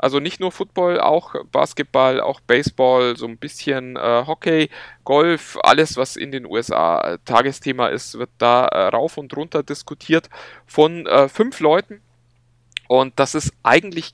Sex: male